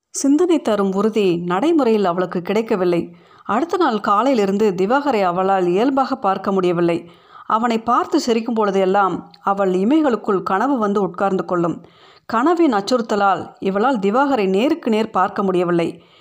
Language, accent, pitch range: Tamil, native, 190-250 Hz